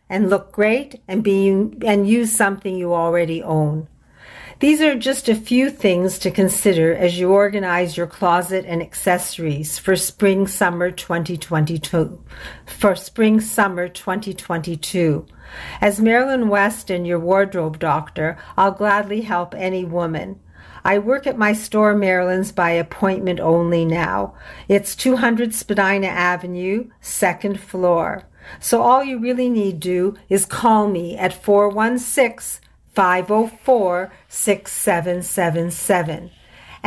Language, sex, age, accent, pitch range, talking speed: English, female, 50-69, American, 180-220 Hz, 120 wpm